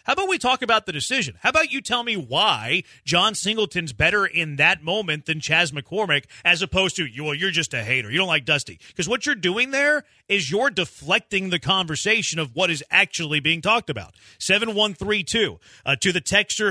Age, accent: 30-49, American